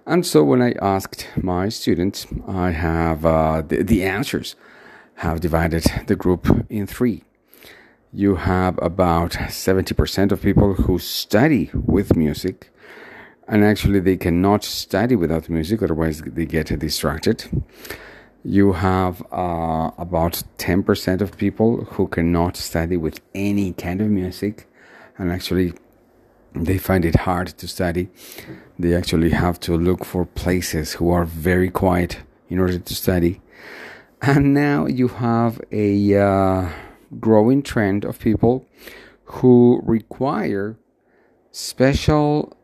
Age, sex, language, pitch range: 40-59, male, English, 85-110 Hz